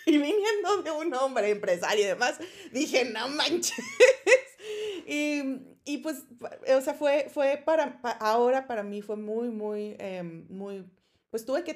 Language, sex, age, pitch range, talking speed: Spanish, female, 30-49, 190-235 Hz, 160 wpm